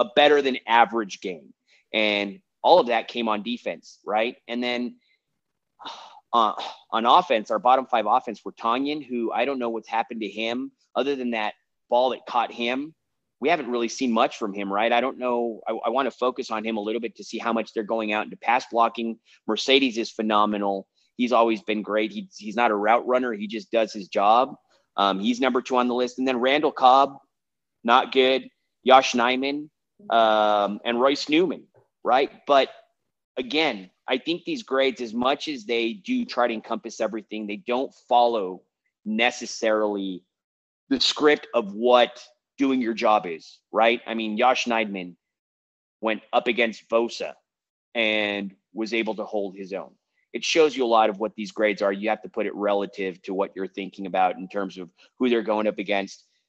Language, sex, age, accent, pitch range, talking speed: English, male, 30-49, American, 105-125 Hz, 190 wpm